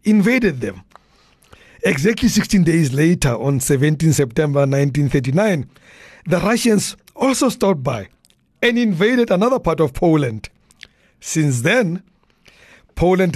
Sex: male